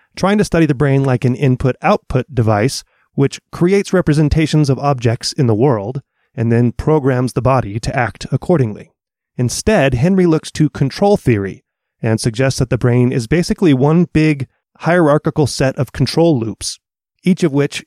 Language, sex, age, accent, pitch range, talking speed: English, male, 30-49, American, 120-155 Hz, 160 wpm